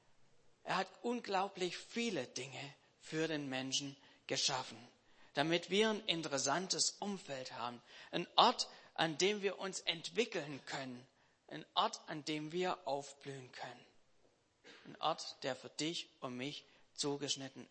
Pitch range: 140-190 Hz